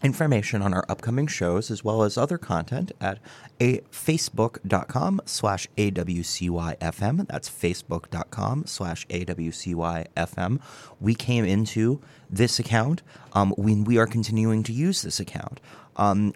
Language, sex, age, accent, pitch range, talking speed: English, male, 30-49, American, 85-125 Hz, 120 wpm